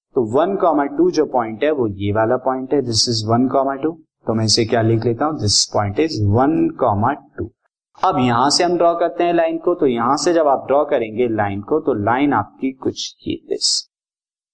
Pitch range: 115-175 Hz